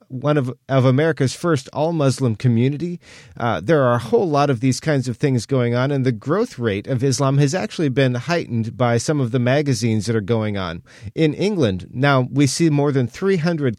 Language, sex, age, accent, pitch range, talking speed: English, male, 40-59, American, 120-155 Hz, 205 wpm